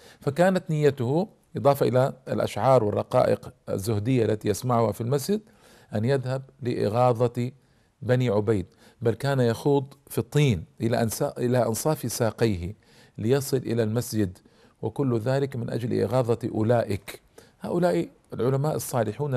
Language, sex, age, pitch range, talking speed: Arabic, male, 50-69, 115-145 Hz, 115 wpm